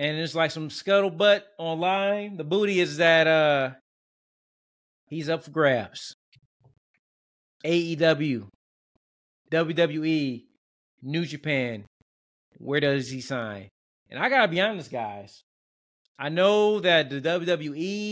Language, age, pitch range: English, 30-49, 130-175 Hz